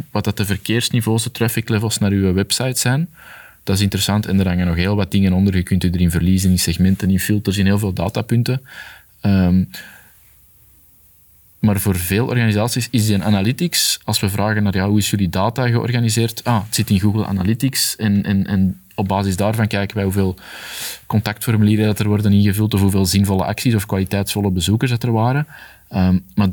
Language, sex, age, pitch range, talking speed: Dutch, male, 20-39, 95-110 Hz, 195 wpm